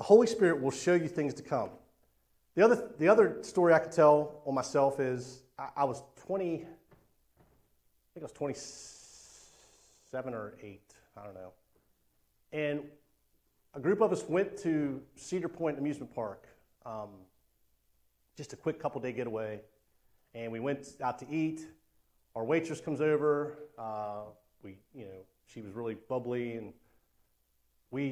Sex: male